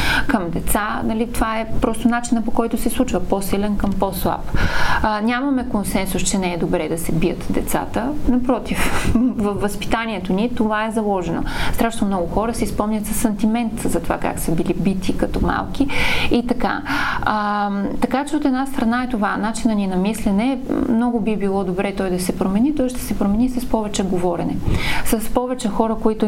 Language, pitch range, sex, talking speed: Bulgarian, 200-245 Hz, female, 185 wpm